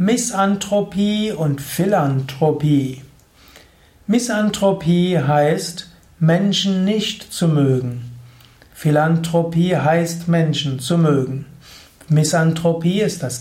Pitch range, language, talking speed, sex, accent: 145-180 Hz, German, 75 wpm, male, German